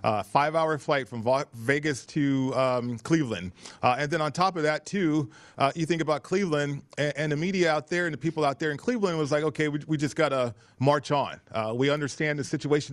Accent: American